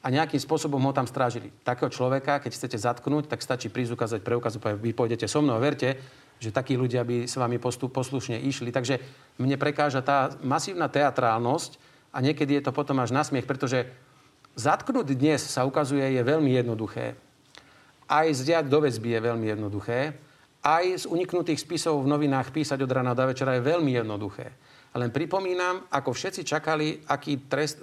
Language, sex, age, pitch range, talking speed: Slovak, male, 40-59, 125-150 Hz, 175 wpm